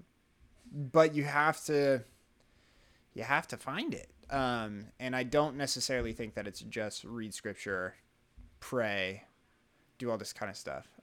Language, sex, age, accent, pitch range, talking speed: English, male, 20-39, American, 120-150 Hz, 145 wpm